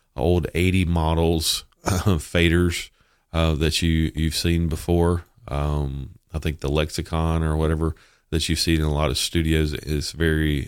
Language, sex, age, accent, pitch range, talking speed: English, male, 40-59, American, 75-85 Hz, 165 wpm